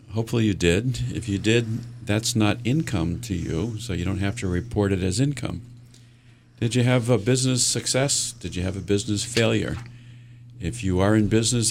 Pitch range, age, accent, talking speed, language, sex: 95-120 Hz, 50-69, American, 190 wpm, English, male